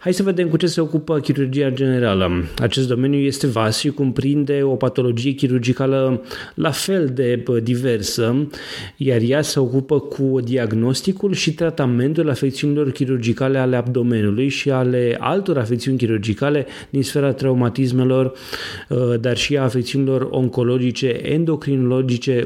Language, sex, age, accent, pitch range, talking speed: Romanian, male, 30-49, native, 120-145 Hz, 130 wpm